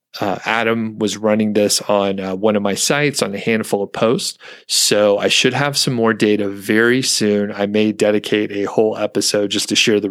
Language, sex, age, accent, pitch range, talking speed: English, male, 30-49, American, 100-115 Hz, 210 wpm